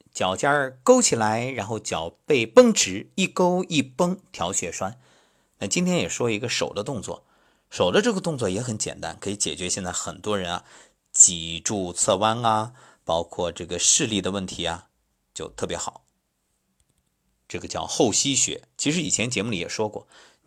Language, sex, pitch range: Chinese, male, 85-140 Hz